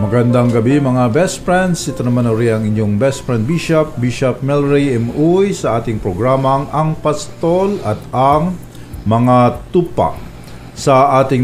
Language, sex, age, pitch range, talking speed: Filipino, male, 50-69, 105-145 Hz, 145 wpm